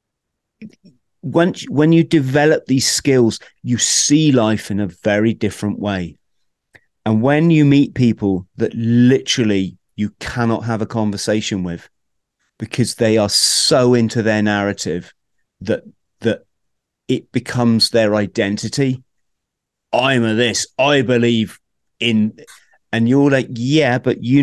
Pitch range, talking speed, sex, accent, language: 105-135 Hz, 130 wpm, male, British, English